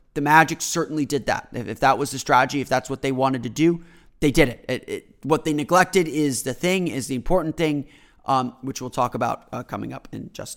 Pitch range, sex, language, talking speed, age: 135-165 Hz, male, English, 245 wpm, 30-49